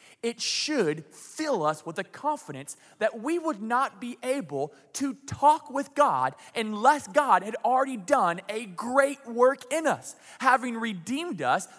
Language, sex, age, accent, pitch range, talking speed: English, male, 20-39, American, 225-295 Hz, 155 wpm